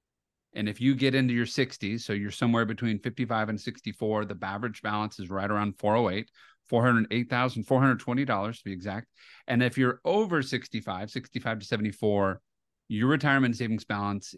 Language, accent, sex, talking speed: English, American, male, 155 wpm